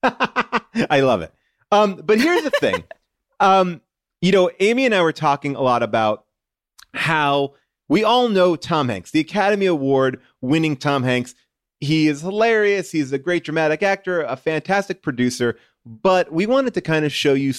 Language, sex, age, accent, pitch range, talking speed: English, male, 30-49, American, 120-165 Hz, 170 wpm